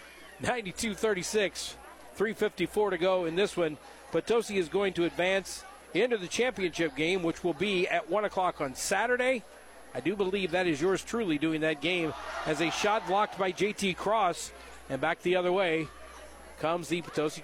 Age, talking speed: 50-69, 160 wpm